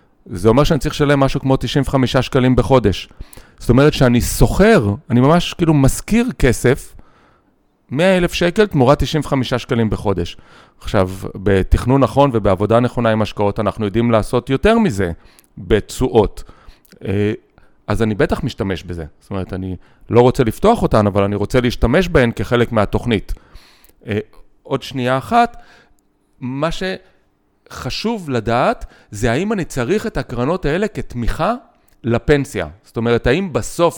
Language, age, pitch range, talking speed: Hebrew, 40-59, 110-145 Hz, 135 wpm